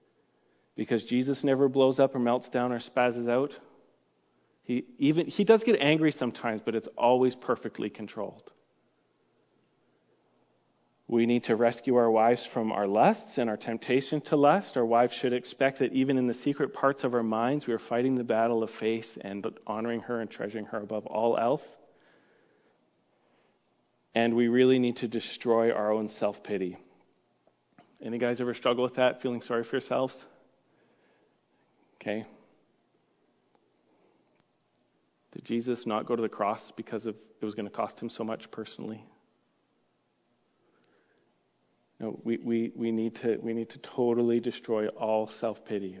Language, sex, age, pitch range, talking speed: English, male, 40-59, 110-125 Hz, 155 wpm